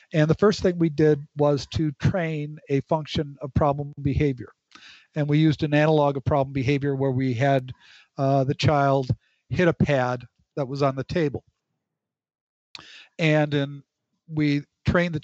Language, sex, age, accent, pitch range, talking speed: English, male, 50-69, American, 140-155 Hz, 160 wpm